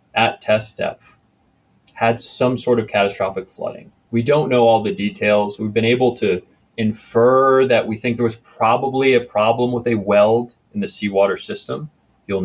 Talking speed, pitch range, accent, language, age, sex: 175 wpm, 105-130 Hz, American, English, 30-49, male